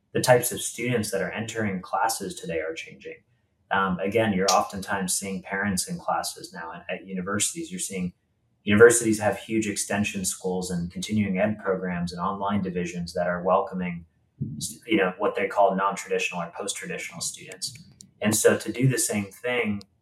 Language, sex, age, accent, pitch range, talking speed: English, male, 30-49, American, 95-110 Hz, 170 wpm